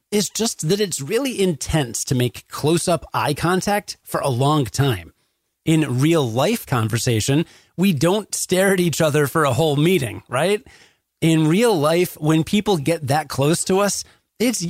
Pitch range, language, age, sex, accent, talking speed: 135-195 Hz, English, 30-49, male, American, 165 wpm